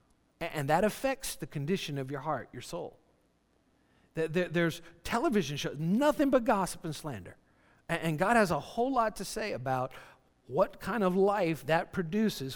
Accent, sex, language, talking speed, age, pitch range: American, male, English, 160 wpm, 50-69, 140-185 Hz